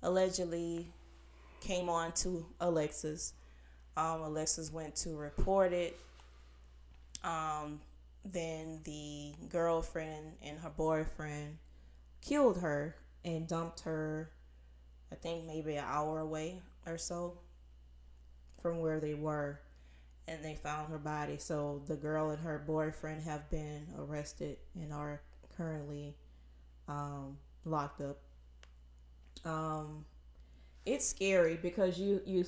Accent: American